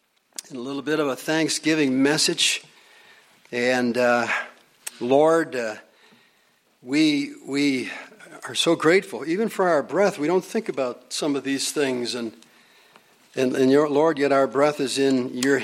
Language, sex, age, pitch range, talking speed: English, male, 60-79, 135-175 Hz, 155 wpm